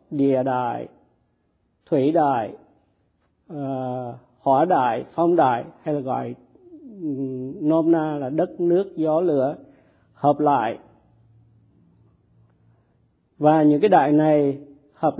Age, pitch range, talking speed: 50-69, 135-165 Hz, 105 wpm